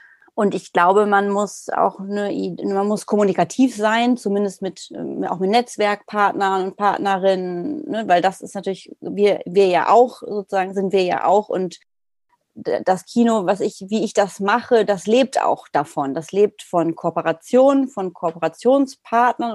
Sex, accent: female, German